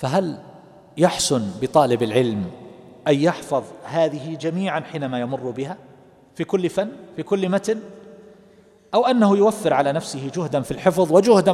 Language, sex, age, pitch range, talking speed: Arabic, male, 40-59, 130-190 Hz, 135 wpm